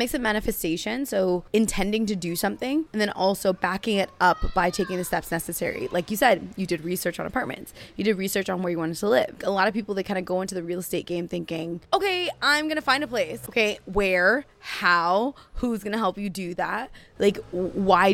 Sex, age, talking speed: female, 20-39, 220 wpm